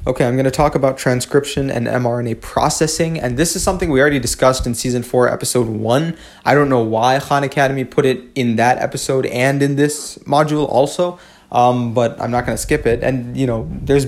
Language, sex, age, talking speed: English, male, 20-39, 215 wpm